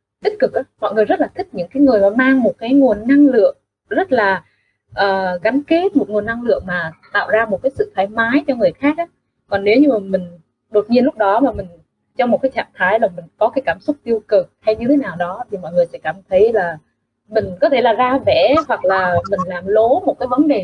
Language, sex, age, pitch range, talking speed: Vietnamese, female, 20-39, 195-280 Hz, 260 wpm